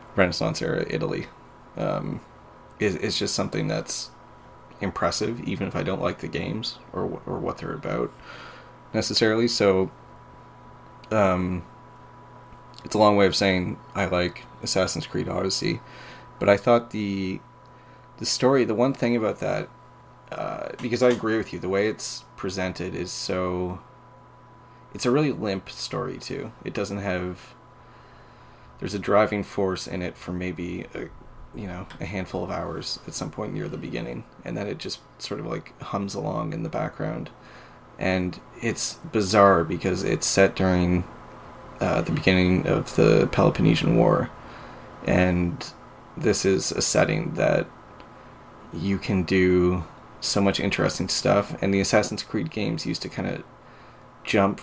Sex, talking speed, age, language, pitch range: male, 150 wpm, 30-49, English, 90-125 Hz